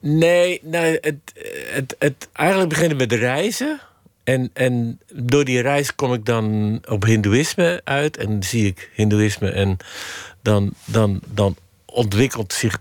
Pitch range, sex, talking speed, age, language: 100-130 Hz, male, 150 wpm, 50-69, Dutch